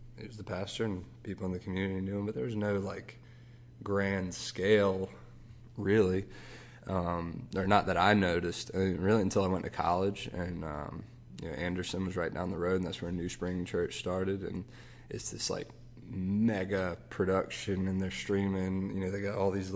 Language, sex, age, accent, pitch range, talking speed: English, male, 20-39, American, 95-110 Hz, 195 wpm